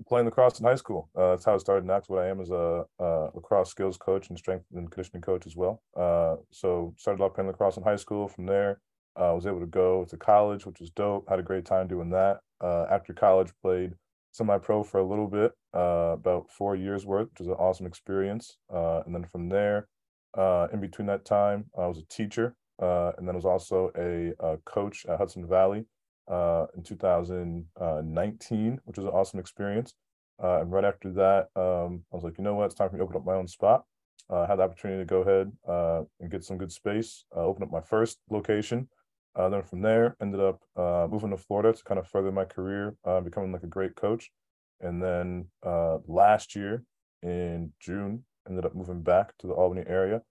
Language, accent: English, American